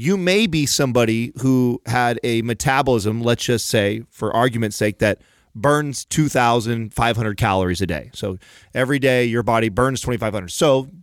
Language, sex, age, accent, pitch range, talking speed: English, male, 30-49, American, 115-145 Hz, 145 wpm